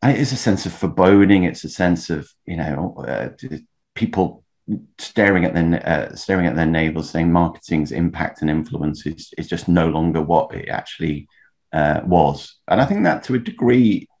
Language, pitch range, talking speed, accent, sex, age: English, 80-90 Hz, 180 wpm, British, male, 30-49